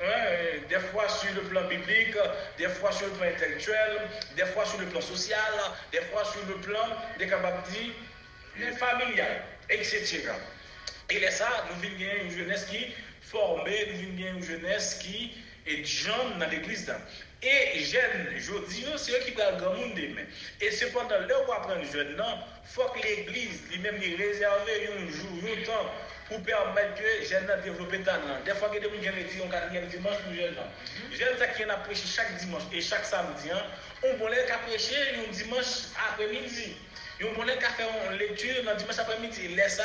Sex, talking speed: male, 180 wpm